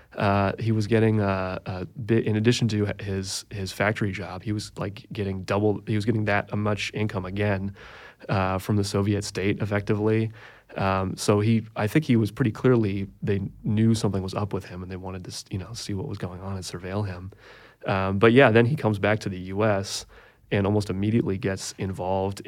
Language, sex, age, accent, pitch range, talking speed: English, male, 30-49, American, 95-110 Hz, 205 wpm